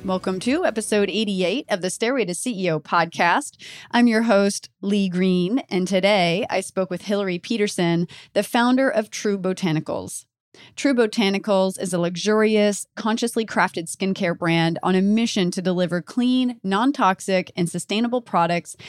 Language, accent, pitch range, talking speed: English, American, 180-235 Hz, 150 wpm